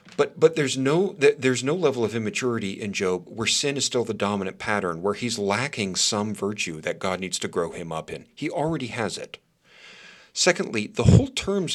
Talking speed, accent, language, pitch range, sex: 200 wpm, American, English, 100-135 Hz, male